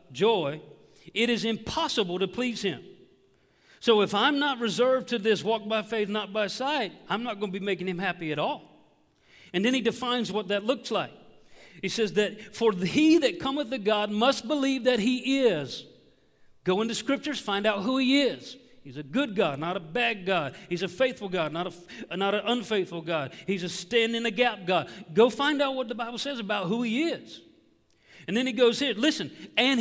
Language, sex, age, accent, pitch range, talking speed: English, male, 40-59, American, 200-255 Hz, 205 wpm